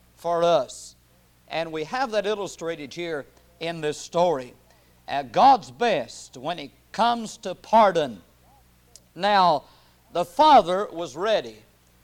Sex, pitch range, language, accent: male, 125-200 Hz, English, American